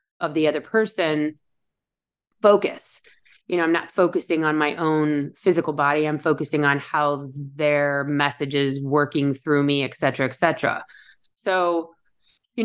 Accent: American